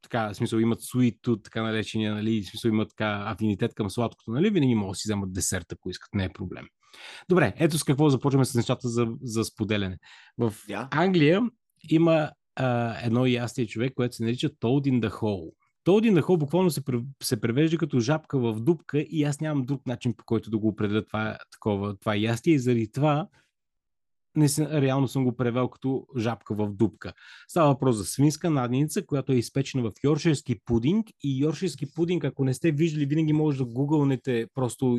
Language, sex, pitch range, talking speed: Bulgarian, male, 115-150 Hz, 190 wpm